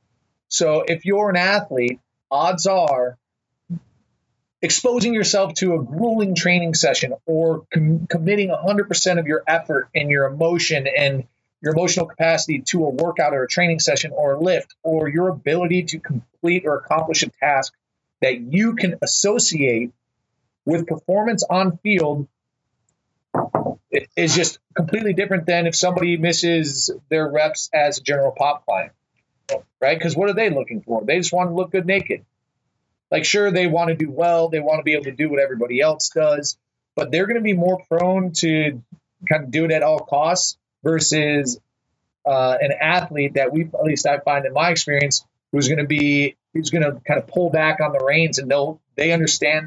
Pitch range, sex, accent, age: 140-175 Hz, male, American, 40-59